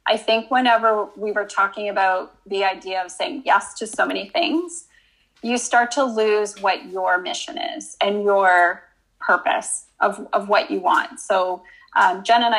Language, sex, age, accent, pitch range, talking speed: English, female, 20-39, American, 200-255 Hz, 170 wpm